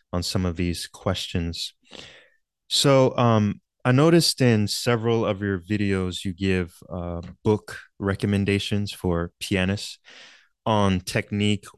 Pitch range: 95-115 Hz